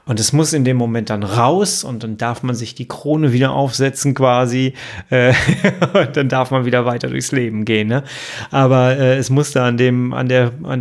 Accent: German